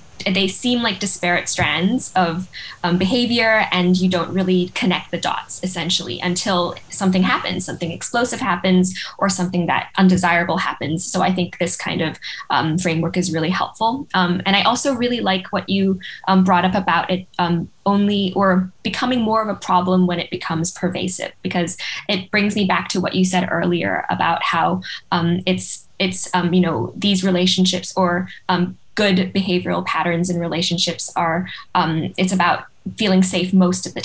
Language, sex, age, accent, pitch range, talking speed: English, female, 10-29, American, 175-190 Hz, 175 wpm